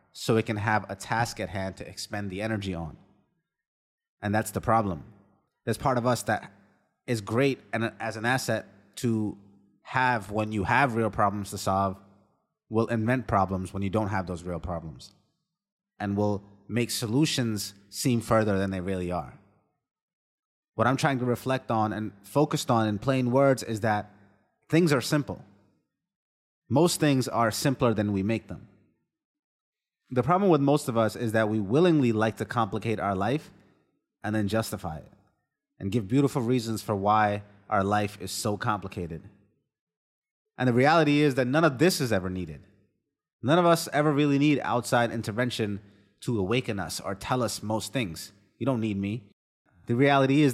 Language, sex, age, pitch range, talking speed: English, male, 30-49, 100-130 Hz, 170 wpm